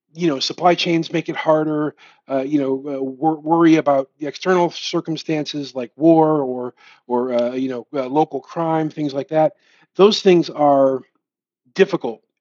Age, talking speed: 40-59, 165 wpm